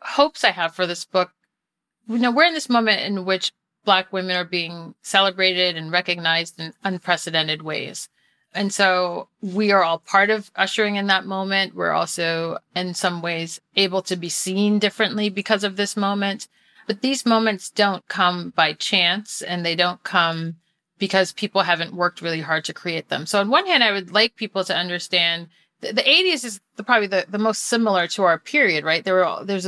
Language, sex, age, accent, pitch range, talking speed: English, female, 30-49, American, 165-205 Hz, 190 wpm